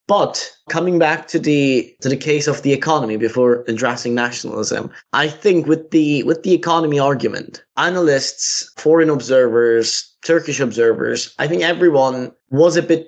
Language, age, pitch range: English, 20-39, 115-150 Hz